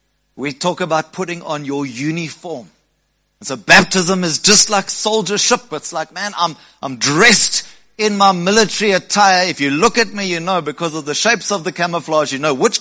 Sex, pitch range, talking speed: male, 145-195 Hz, 195 wpm